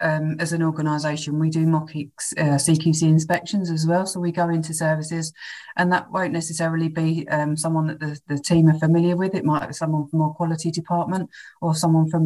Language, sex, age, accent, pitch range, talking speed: English, female, 30-49, British, 145-160 Hz, 205 wpm